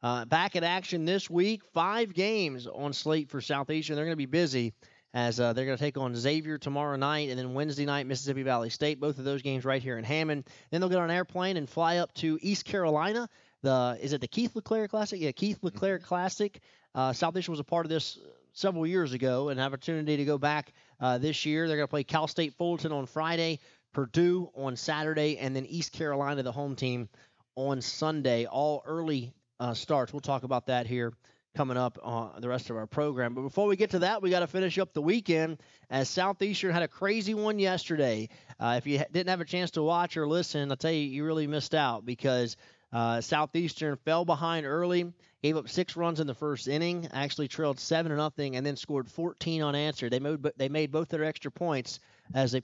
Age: 30-49